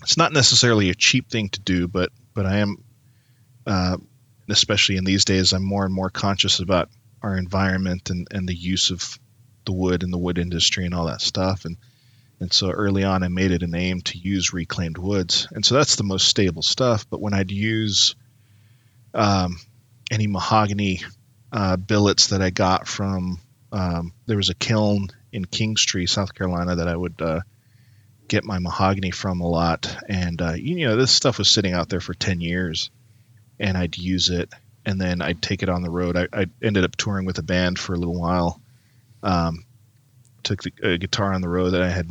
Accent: American